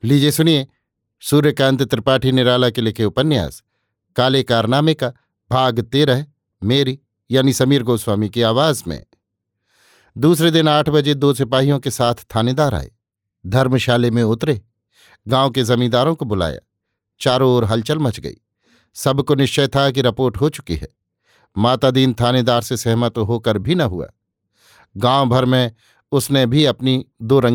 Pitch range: 115-135 Hz